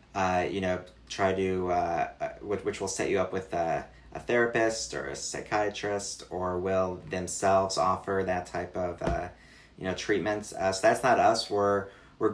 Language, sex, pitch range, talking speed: English, male, 90-100 Hz, 175 wpm